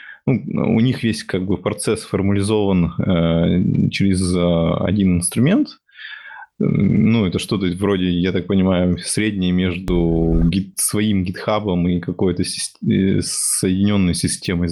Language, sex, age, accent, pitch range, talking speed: Russian, male, 20-39, native, 90-105 Hz, 120 wpm